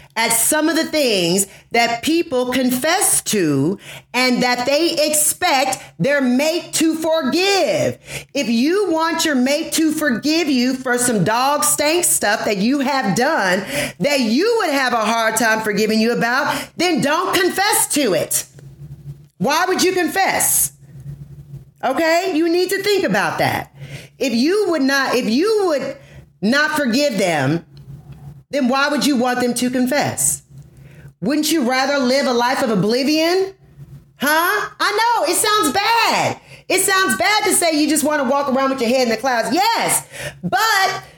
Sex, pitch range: female, 215-320 Hz